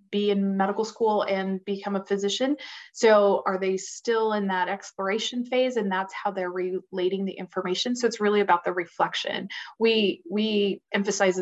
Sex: female